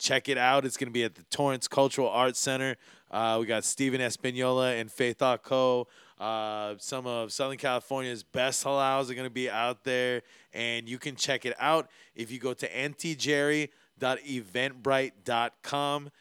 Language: English